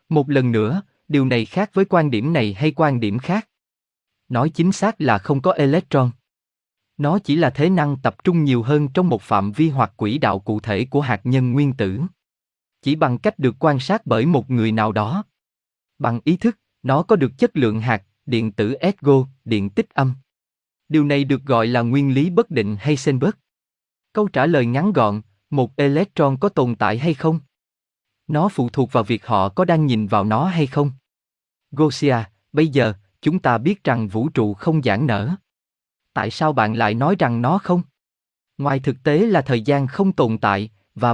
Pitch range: 110-160 Hz